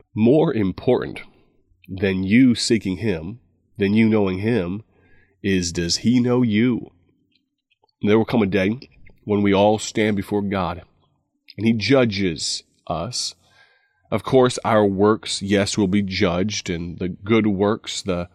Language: English